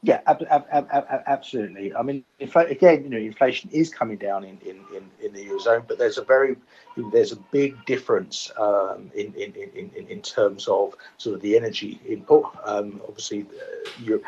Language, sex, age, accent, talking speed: English, male, 50-69, British, 200 wpm